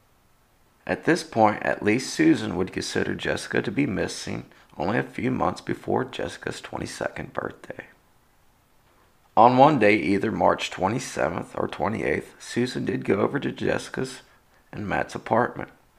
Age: 40-59